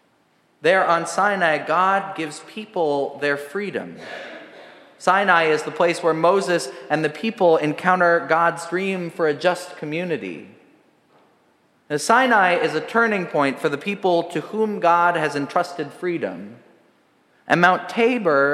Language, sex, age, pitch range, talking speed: English, male, 30-49, 150-180 Hz, 135 wpm